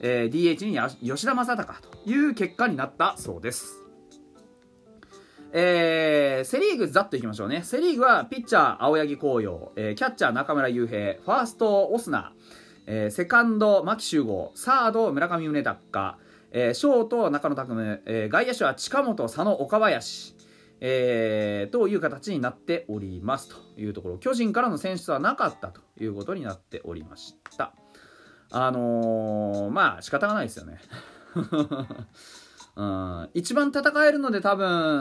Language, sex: Japanese, male